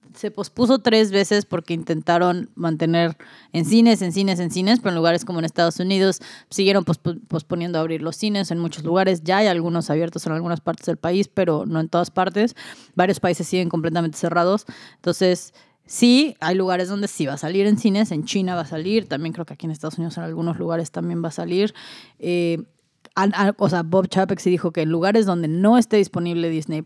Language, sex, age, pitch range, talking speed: Spanish, female, 20-39, 165-200 Hz, 210 wpm